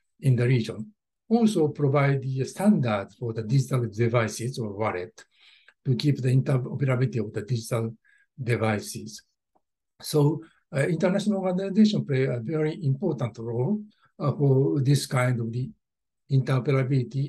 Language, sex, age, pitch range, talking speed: English, male, 60-79, 125-180 Hz, 130 wpm